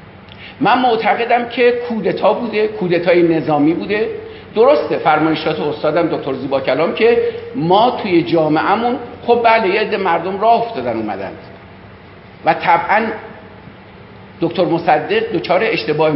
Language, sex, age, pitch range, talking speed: Persian, male, 50-69, 150-230 Hz, 115 wpm